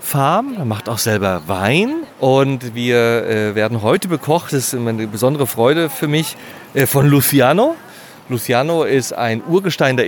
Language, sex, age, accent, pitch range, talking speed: German, male, 40-59, German, 120-160 Hz, 155 wpm